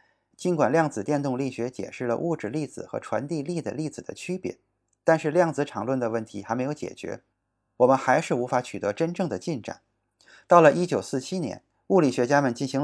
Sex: male